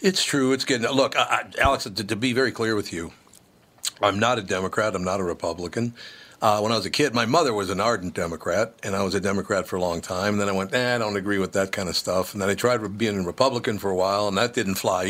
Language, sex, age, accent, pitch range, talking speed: English, male, 60-79, American, 100-135 Hz, 280 wpm